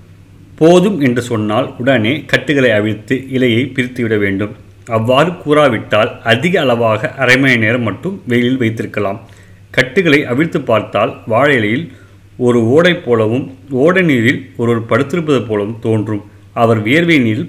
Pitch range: 105-135 Hz